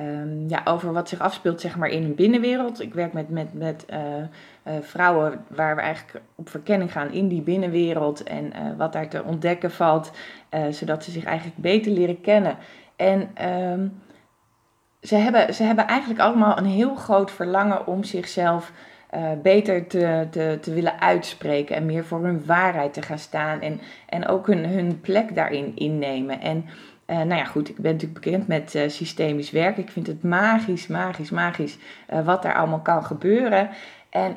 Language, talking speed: Dutch, 185 wpm